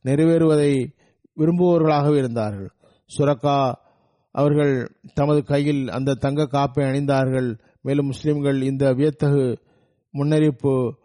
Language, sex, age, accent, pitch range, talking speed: Tamil, male, 50-69, native, 135-150 Hz, 85 wpm